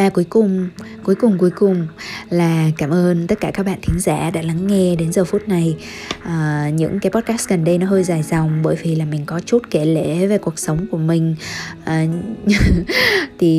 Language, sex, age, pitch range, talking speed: Vietnamese, female, 20-39, 165-195 Hz, 210 wpm